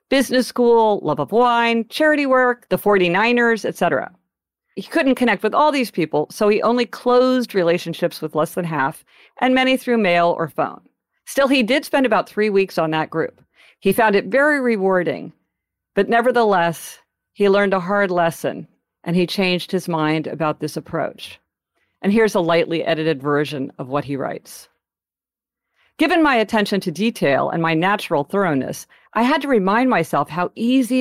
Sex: female